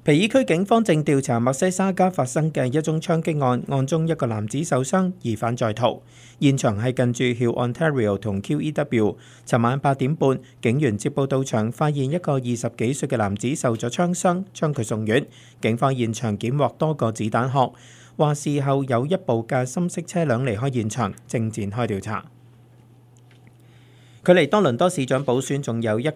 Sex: male